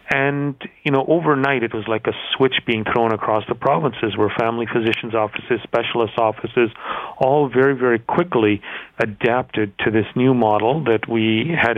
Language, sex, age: English, male, 40-59